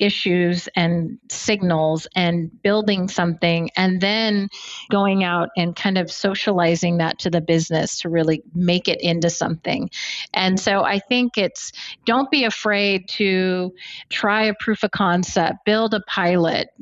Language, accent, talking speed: English, American, 145 wpm